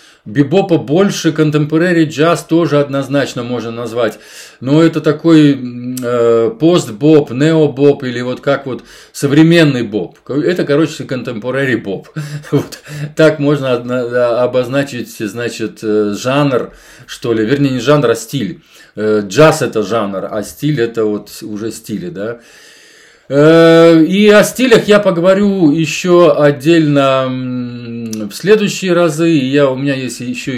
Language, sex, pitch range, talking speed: Russian, male, 120-155 Hz, 130 wpm